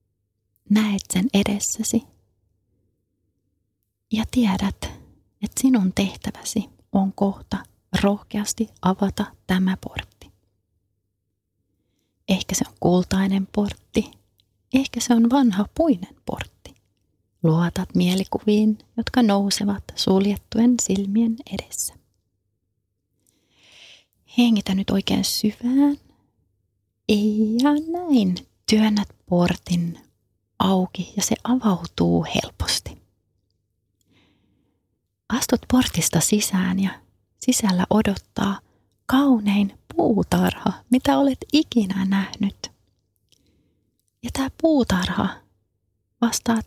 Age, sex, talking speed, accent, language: 30-49, female, 80 wpm, native, Finnish